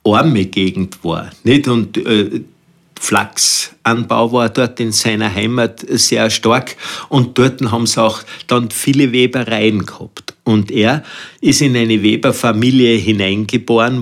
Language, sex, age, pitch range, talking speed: German, male, 50-69, 110-140 Hz, 130 wpm